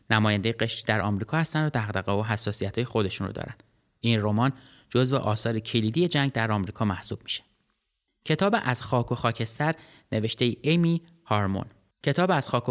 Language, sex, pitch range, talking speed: Persian, male, 110-145 Hz, 160 wpm